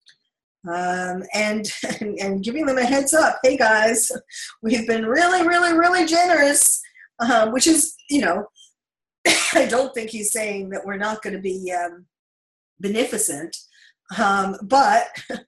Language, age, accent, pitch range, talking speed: English, 40-59, American, 200-280 Hz, 145 wpm